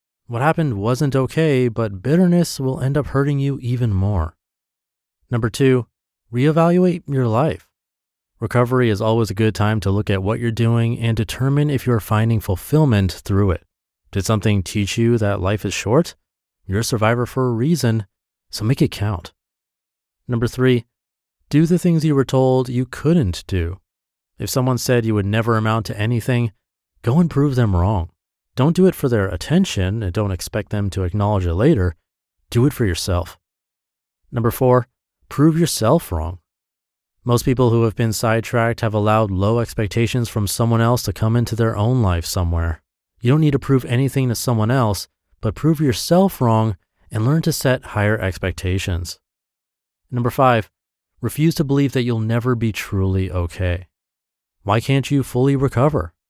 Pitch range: 95-130 Hz